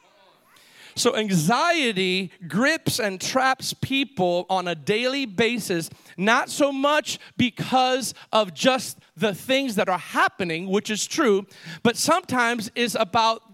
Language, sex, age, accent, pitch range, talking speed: English, male, 40-59, American, 190-255 Hz, 125 wpm